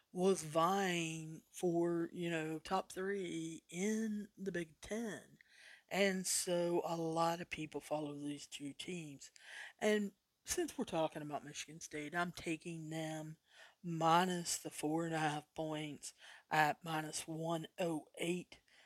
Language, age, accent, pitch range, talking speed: English, 50-69, American, 155-190 Hz, 130 wpm